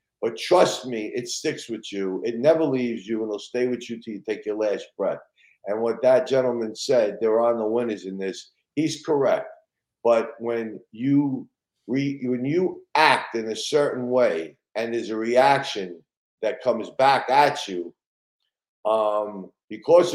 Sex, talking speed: male, 175 wpm